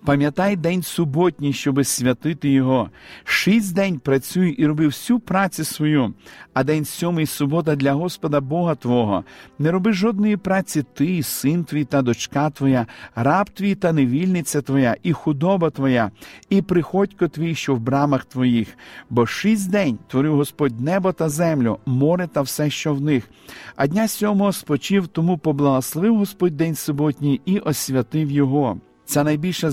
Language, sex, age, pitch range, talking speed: Ukrainian, male, 50-69, 135-175 Hz, 155 wpm